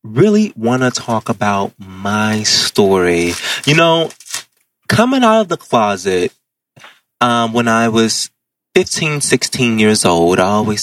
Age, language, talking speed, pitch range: 20-39, English, 135 wpm, 110-135 Hz